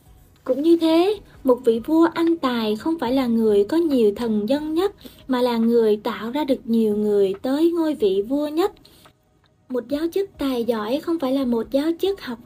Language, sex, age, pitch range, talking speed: Vietnamese, female, 20-39, 230-325 Hz, 200 wpm